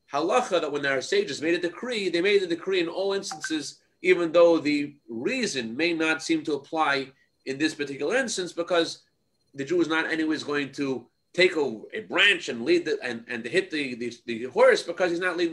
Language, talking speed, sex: English, 195 wpm, male